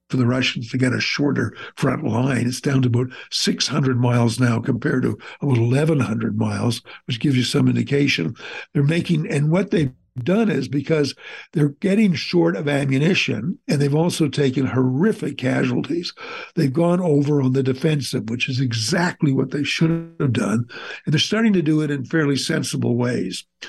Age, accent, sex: 60-79, American, male